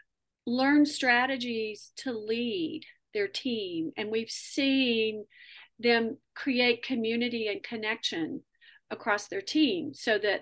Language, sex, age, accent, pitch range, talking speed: English, female, 40-59, American, 215-285 Hz, 110 wpm